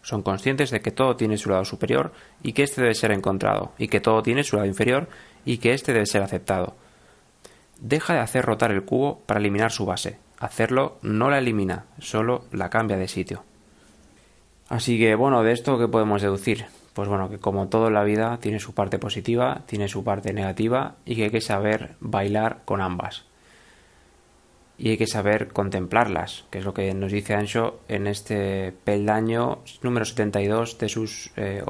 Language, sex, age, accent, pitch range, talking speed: Spanish, male, 20-39, Spanish, 100-115 Hz, 185 wpm